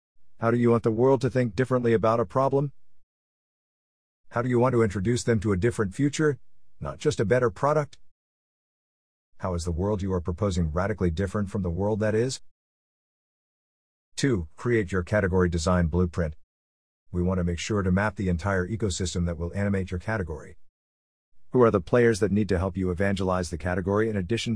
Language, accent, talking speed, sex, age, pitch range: English, American, 190 wpm, male, 50-69, 90-115 Hz